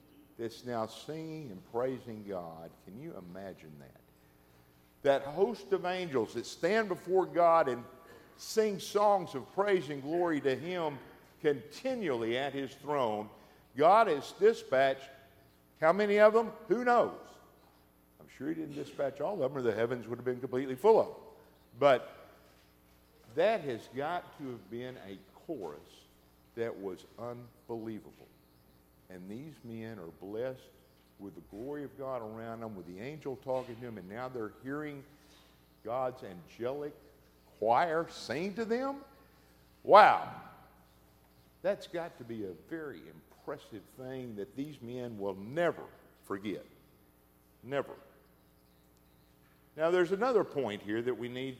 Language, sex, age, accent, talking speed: English, male, 50-69, American, 140 wpm